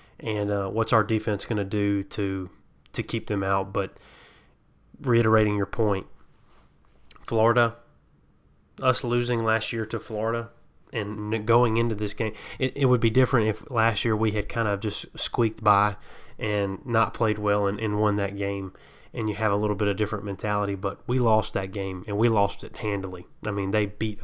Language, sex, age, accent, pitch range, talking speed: English, male, 20-39, American, 100-115 Hz, 190 wpm